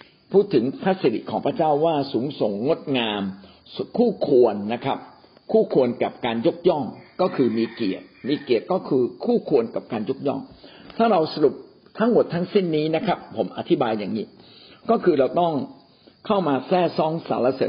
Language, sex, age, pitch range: Thai, male, 60-79, 130-195 Hz